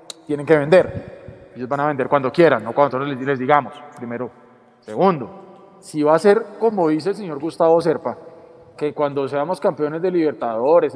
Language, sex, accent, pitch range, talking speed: Spanish, male, Colombian, 150-180 Hz, 175 wpm